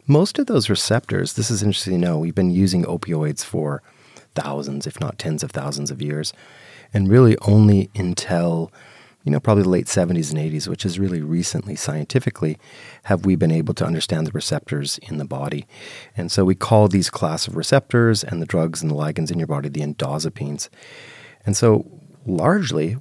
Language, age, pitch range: English, 30-49, 80-105 Hz